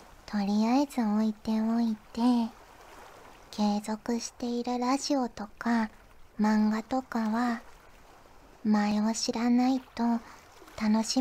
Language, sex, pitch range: Japanese, male, 220-250 Hz